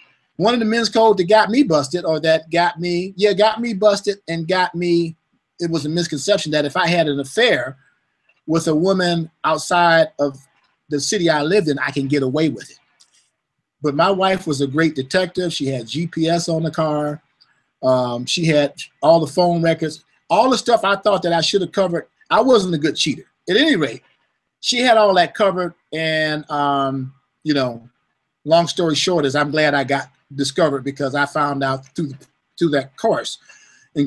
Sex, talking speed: male, 195 wpm